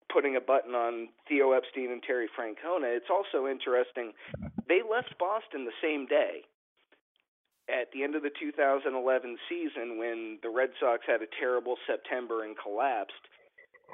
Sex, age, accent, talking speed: male, 40-59, American, 150 wpm